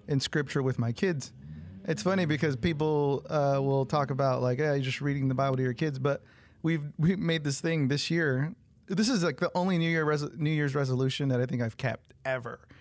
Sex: male